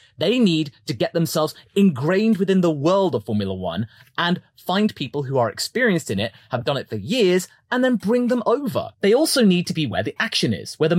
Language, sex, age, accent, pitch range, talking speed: English, male, 30-49, British, 135-220 Hz, 225 wpm